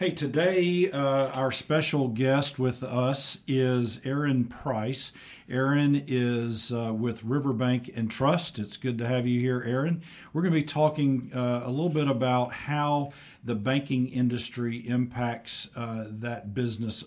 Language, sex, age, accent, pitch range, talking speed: English, male, 50-69, American, 110-130 Hz, 150 wpm